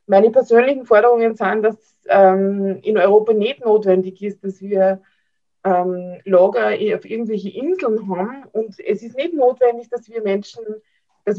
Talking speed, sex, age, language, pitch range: 155 wpm, female, 20-39, German, 195-235 Hz